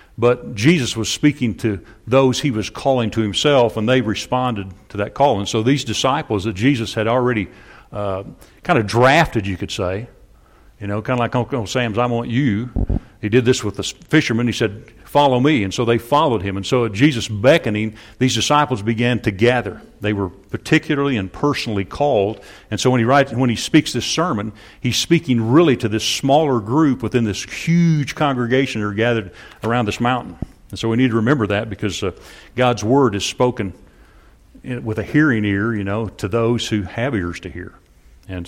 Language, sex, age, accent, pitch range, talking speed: English, male, 50-69, American, 110-135 Hz, 195 wpm